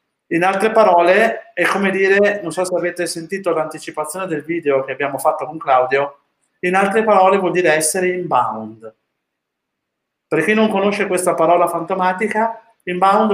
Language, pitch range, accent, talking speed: Italian, 150-205 Hz, native, 155 wpm